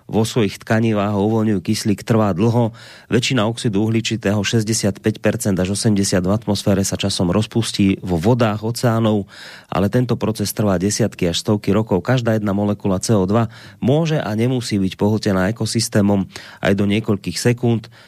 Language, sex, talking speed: Slovak, male, 145 wpm